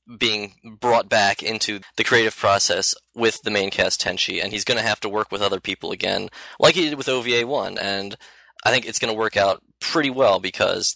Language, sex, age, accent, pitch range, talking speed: English, male, 20-39, American, 95-115 Hz, 215 wpm